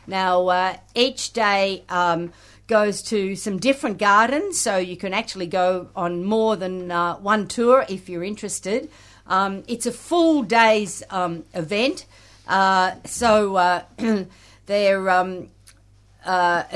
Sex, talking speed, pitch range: female, 130 wpm, 185-225 Hz